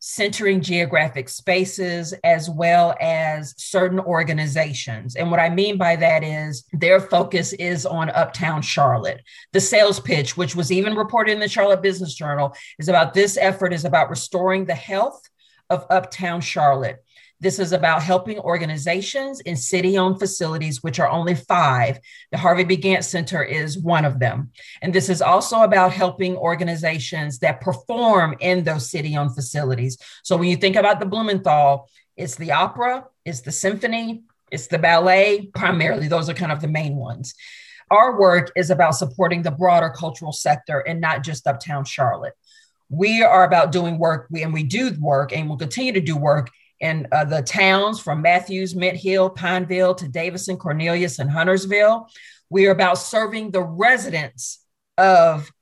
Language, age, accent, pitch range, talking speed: English, 40-59, American, 155-185 Hz, 165 wpm